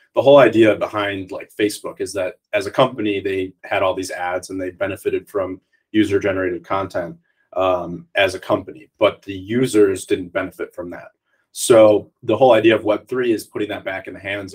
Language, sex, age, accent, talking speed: English, male, 20-39, American, 200 wpm